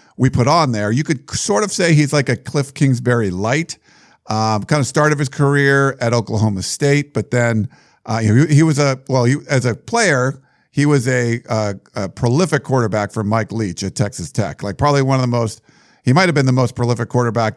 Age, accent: 50-69, American